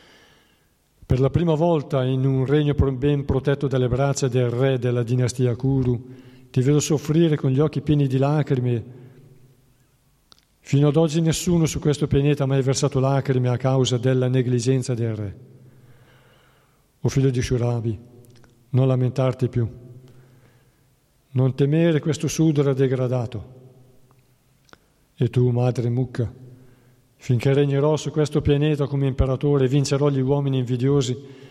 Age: 50-69